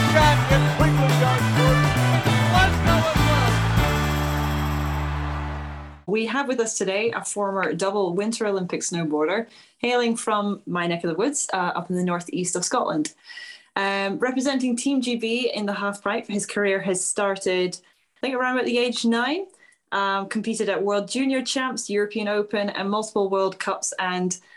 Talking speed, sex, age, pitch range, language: 140 wpm, female, 20-39, 170-220 Hz, English